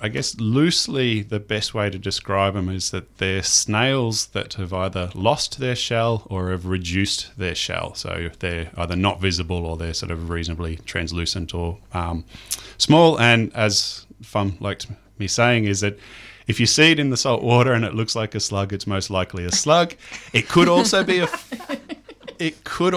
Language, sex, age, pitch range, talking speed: English, male, 30-49, 95-120 Hz, 190 wpm